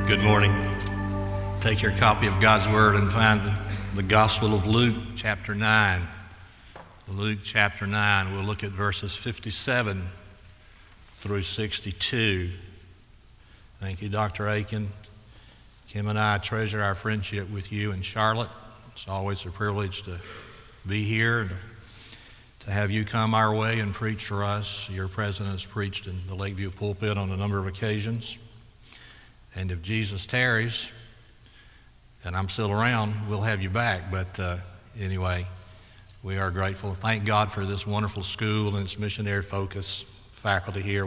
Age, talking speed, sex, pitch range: 60-79, 150 wpm, male, 95-110 Hz